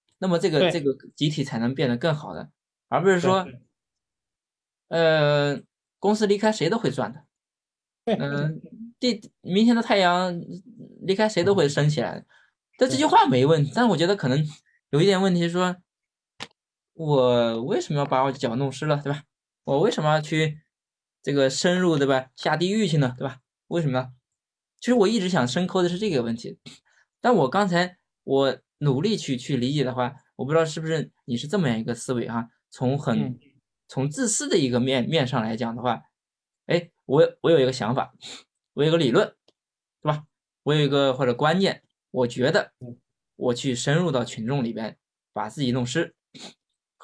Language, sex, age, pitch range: Chinese, male, 20-39, 130-180 Hz